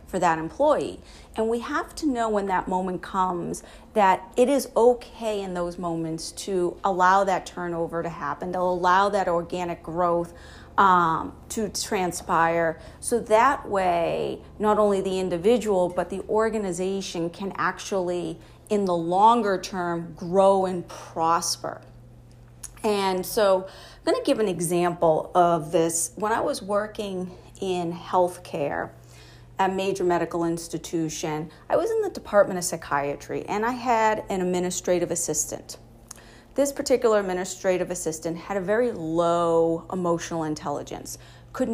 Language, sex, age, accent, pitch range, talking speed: English, female, 40-59, American, 170-200 Hz, 135 wpm